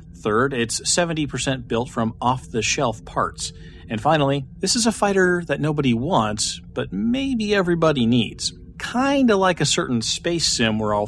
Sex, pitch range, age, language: male, 110-145 Hz, 40-59, English